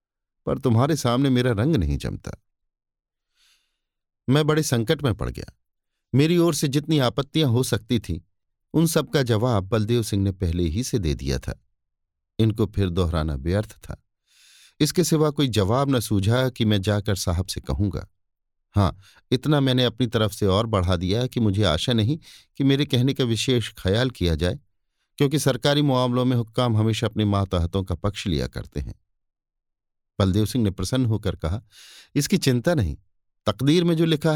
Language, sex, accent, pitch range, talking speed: Hindi, male, native, 95-140 Hz, 170 wpm